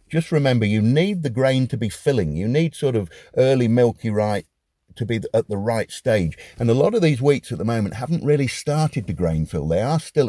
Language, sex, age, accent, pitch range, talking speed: English, male, 50-69, British, 95-135 Hz, 235 wpm